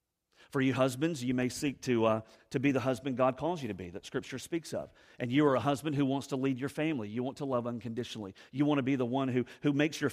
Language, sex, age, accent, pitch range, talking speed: English, male, 40-59, American, 125-160 Hz, 280 wpm